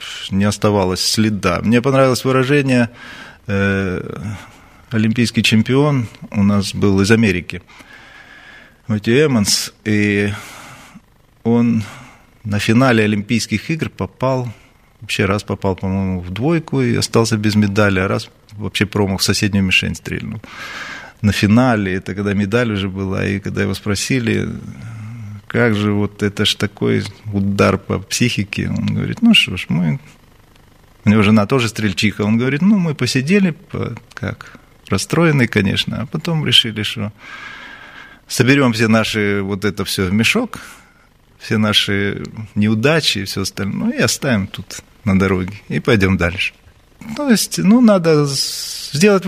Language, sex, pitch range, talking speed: Ukrainian, male, 100-130 Hz, 135 wpm